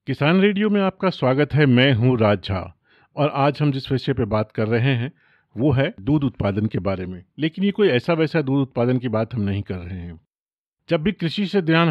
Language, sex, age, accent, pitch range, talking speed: Hindi, male, 40-59, native, 120-150 Hz, 230 wpm